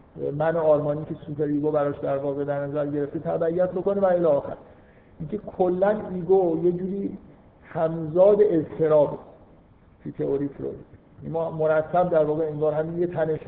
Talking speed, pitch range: 150 wpm, 145-175 Hz